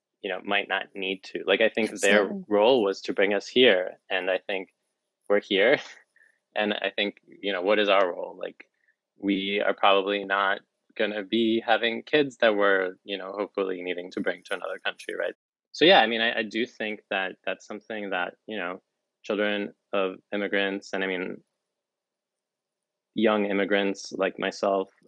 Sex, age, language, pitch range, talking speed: male, 20-39, English, 95-115 Hz, 180 wpm